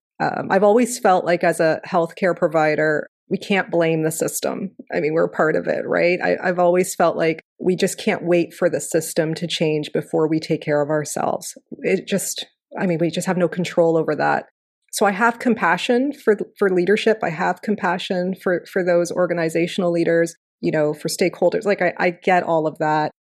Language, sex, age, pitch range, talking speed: English, female, 30-49, 160-200 Hz, 200 wpm